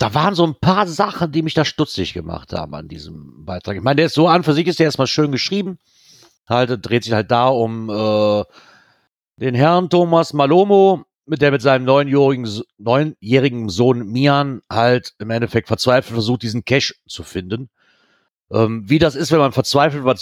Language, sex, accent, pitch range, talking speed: German, male, German, 115-150 Hz, 185 wpm